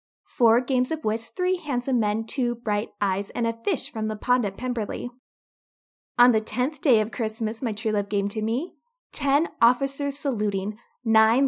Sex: female